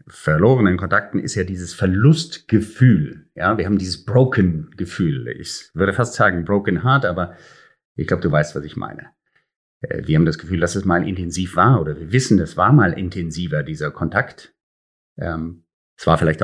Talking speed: 170 wpm